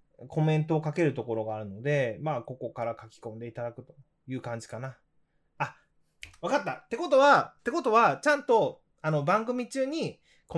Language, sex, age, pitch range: Japanese, male, 20-39, 120-175 Hz